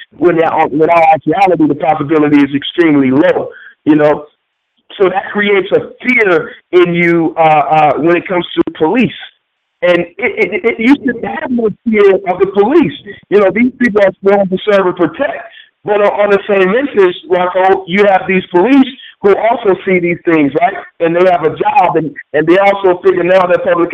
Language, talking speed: English, 195 wpm